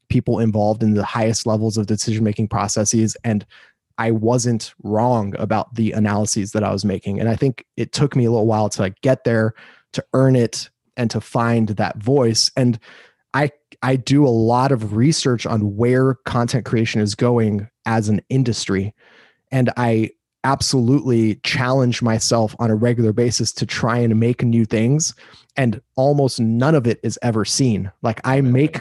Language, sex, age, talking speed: English, male, 20-39, 175 wpm